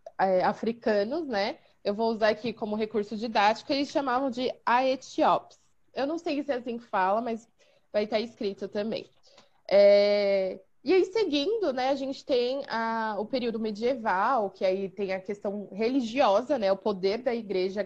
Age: 20-39